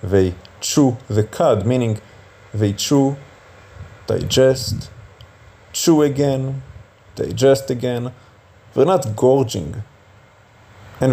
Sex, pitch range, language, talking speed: male, 100-125 Hz, English, 85 wpm